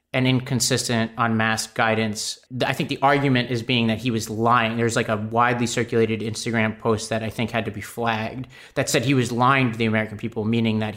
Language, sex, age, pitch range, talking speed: English, male, 30-49, 115-140 Hz, 215 wpm